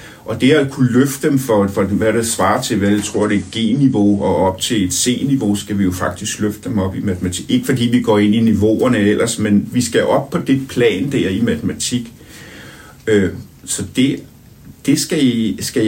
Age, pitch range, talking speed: 60-79, 105-135 Hz, 210 wpm